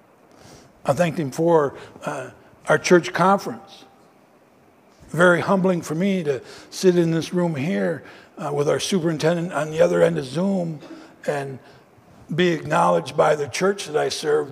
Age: 60-79